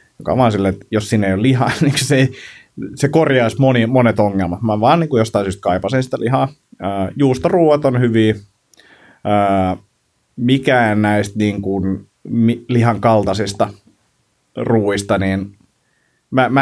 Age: 30-49